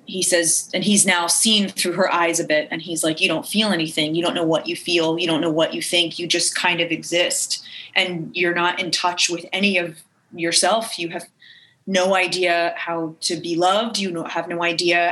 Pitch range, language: 170-185 Hz, English